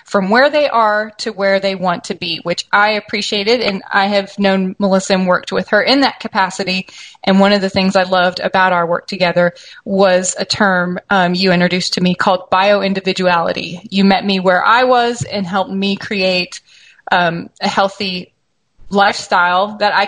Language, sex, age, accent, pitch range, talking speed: English, female, 30-49, American, 185-210 Hz, 185 wpm